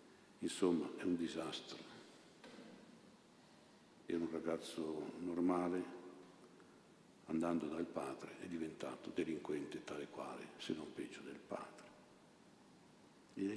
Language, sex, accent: Italian, male, native